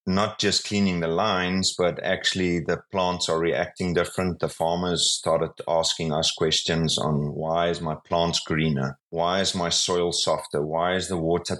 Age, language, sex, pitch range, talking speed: 30-49, English, male, 80-100 Hz, 170 wpm